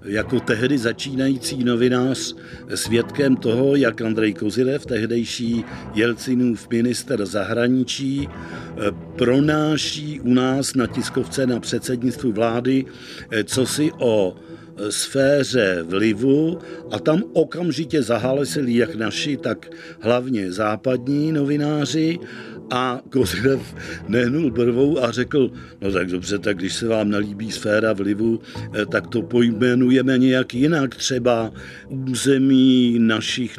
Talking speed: 105 wpm